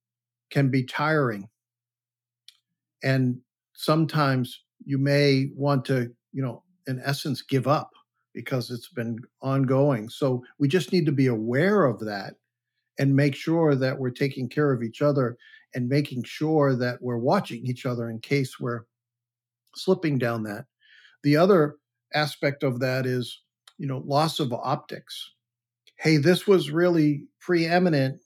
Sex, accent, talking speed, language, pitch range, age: male, American, 145 wpm, English, 125-150 Hz, 50-69